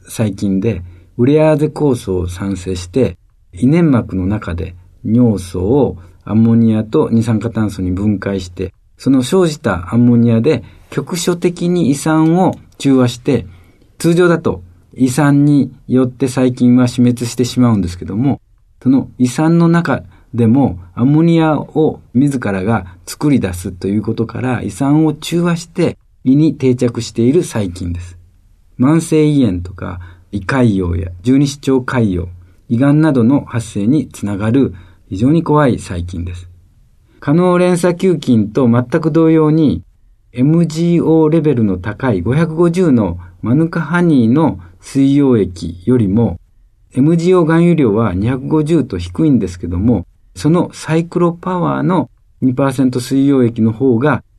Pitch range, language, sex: 95-145 Hz, Japanese, male